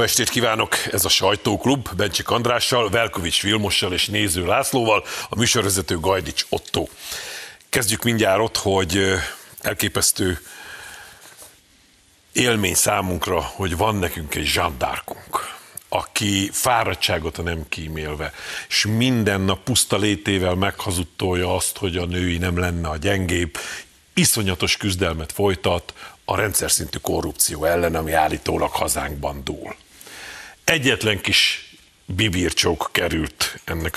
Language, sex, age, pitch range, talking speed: Hungarian, male, 50-69, 90-110 Hz, 110 wpm